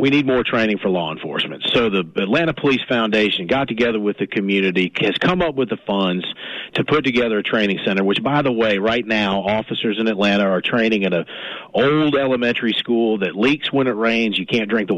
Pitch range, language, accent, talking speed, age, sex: 100-130 Hz, English, American, 215 wpm, 40-59, male